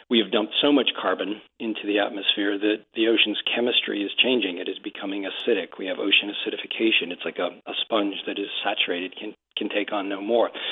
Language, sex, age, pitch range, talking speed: English, male, 40-59, 105-125 Hz, 205 wpm